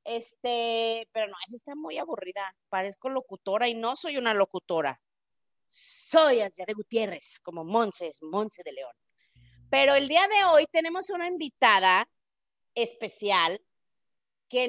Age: 40-59